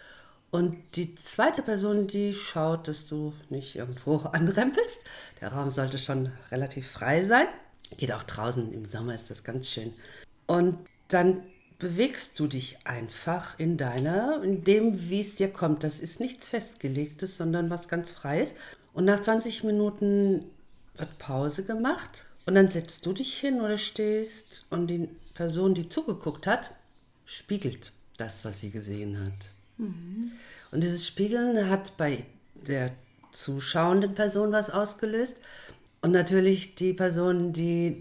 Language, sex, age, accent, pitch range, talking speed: German, female, 50-69, German, 135-195 Hz, 145 wpm